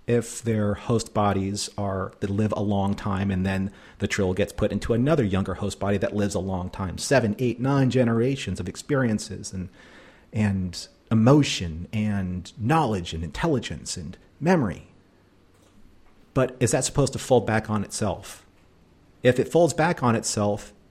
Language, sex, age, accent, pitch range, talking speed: English, male, 40-59, American, 95-120 Hz, 160 wpm